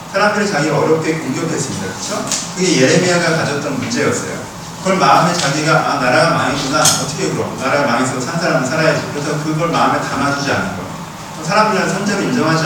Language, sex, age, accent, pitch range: Korean, male, 40-59, native, 150-190 Hz